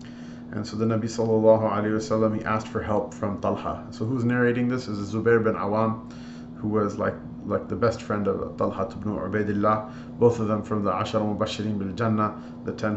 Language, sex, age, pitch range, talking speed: English, male, 30-49, 100-110 Hz, 200 wpm